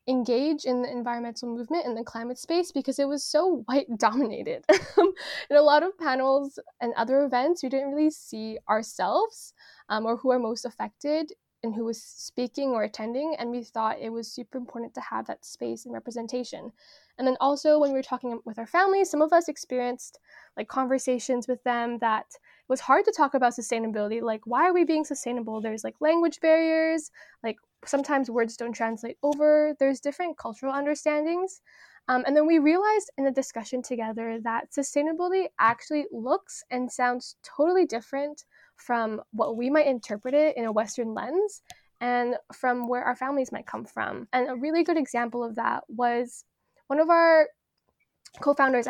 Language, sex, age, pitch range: English, female, 10-29, 235-300 Hz